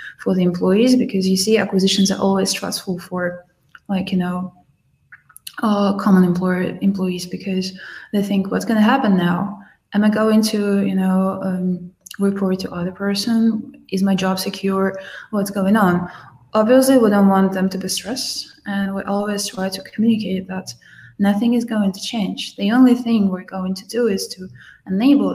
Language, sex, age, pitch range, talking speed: English, female, 20-39, 185-210 Hz, 175 wpm